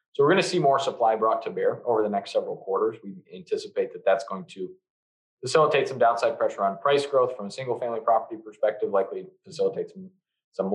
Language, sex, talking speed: English, male, 210 wpm